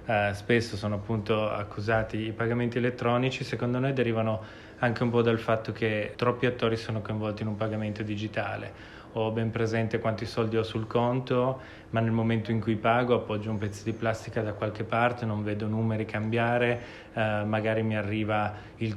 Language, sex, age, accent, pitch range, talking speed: Italian, male, 20-39, native, 110-125 Hz, 175 wpm